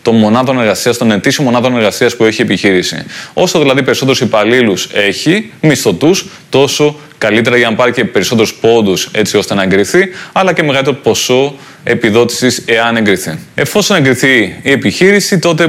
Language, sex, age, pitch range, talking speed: Greek, male, 20-39, 110-140 Hz, 145 wpm